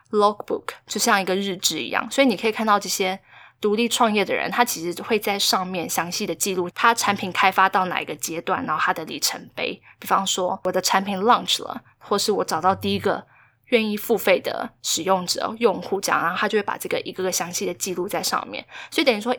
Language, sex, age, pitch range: Chinese, female, 20-39, 180-230 Hz